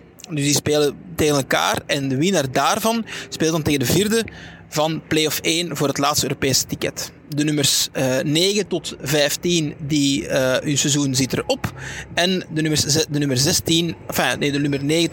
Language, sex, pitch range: Dutch, male, 145-180 Hz